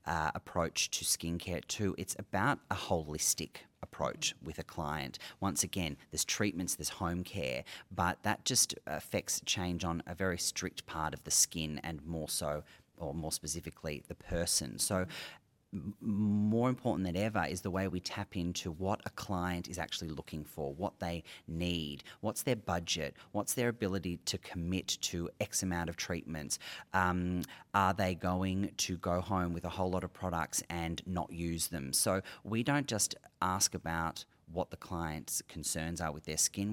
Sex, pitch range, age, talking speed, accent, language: male, 80-95 Hz, 30-49, 175 wpm, Australian, English